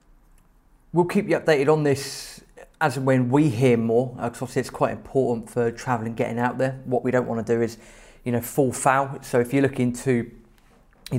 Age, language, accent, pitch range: 30-49, English, British, 120-150 Hz